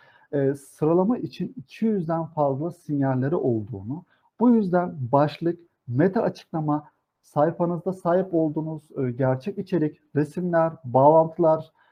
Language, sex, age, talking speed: Turkish, male, 50-69, 100 wpm